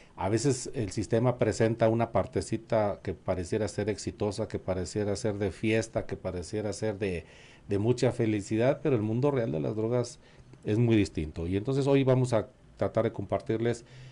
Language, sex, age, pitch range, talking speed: Spanish, male, 40-59, 105-130 Hz, 175 wpm